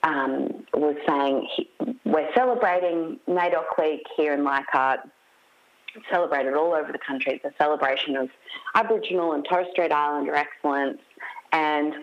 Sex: female